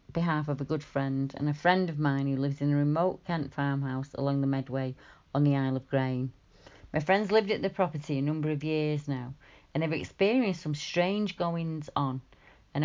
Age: 30-49